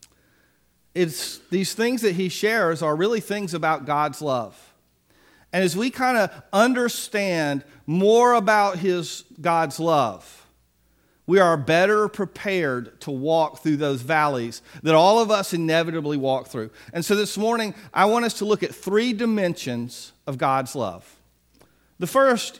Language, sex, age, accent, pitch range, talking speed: English, male, 40-59, American, 150-205 Hz, 150 wpm